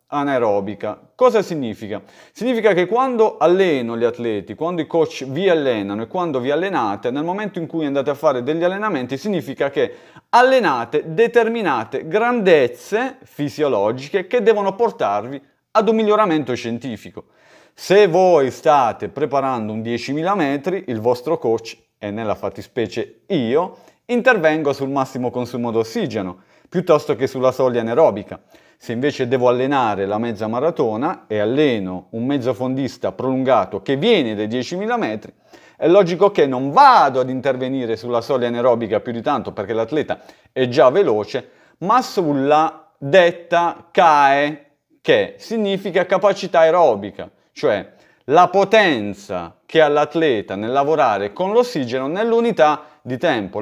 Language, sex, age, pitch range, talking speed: Italian, male, 30-49, 125-195 Hz, 135 wpm